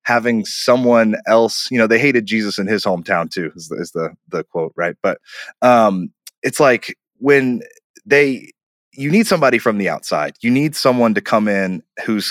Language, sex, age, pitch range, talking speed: English, male, 20-39, 95-125 Hz, 180 wpm